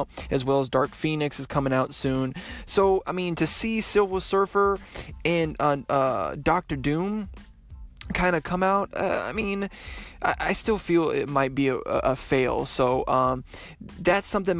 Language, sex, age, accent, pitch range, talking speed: English, male, 20-39, American, 140-175 Hz, 175 wpm